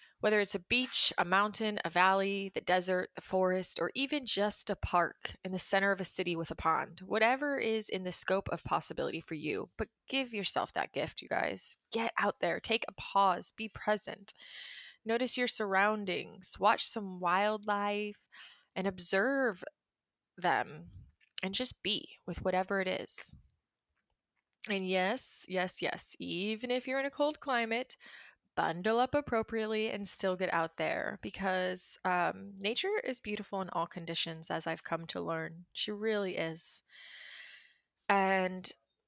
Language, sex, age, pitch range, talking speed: English, female, 20-39, 185-220 Hz, 155 wpm